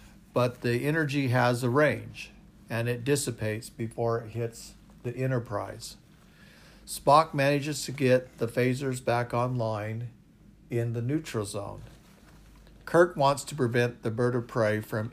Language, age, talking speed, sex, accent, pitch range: English, 50-69, 140 wpm, male, American, 110-130 Hz